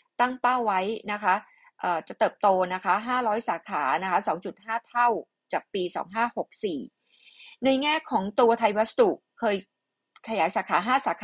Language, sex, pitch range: Thai, female, 200-245 Hz